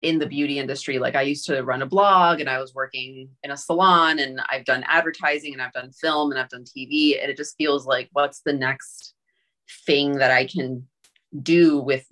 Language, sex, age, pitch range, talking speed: English, female, 30-49, 135-175 Hz, 220 wpm